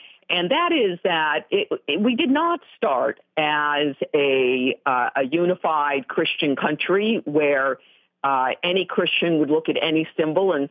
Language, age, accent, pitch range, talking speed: English, 50-69, American, 140-190 Hz, 135 wpm